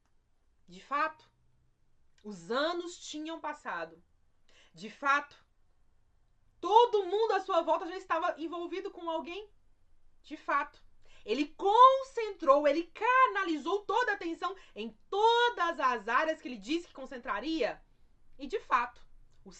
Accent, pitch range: Brazilian, 235-380 Hz